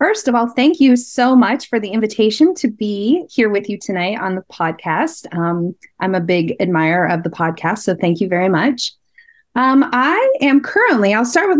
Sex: female